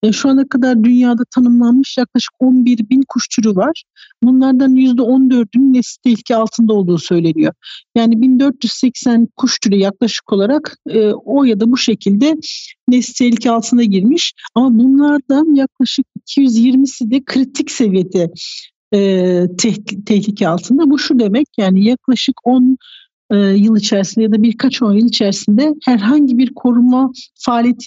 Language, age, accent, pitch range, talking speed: Turkish, 60-79, native, 215-255 Hz, 130 wpm